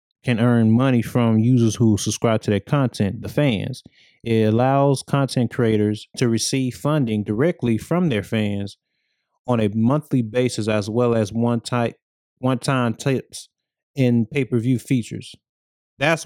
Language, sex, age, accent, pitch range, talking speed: English, male, 20-39, American, 110-130 Hz, 140 wpm